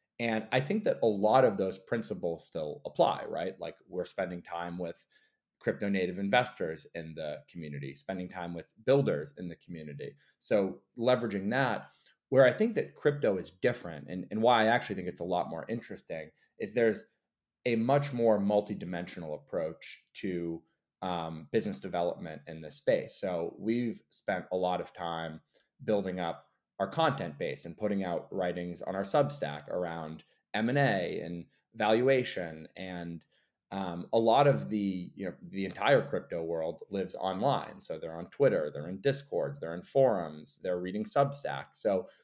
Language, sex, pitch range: English, male, 85-115 Hz